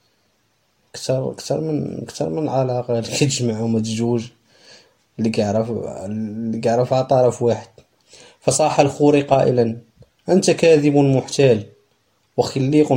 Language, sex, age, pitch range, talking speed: Arabic, male, 20-39, 115-140 Hz, 95 wpm